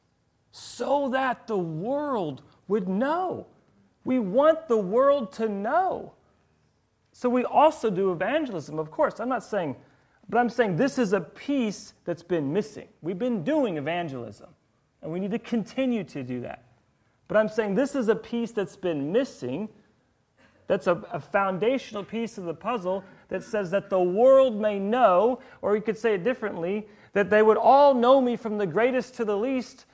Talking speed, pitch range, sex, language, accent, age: 175 wpm, 185-245 Hz, male, English, American, 40-59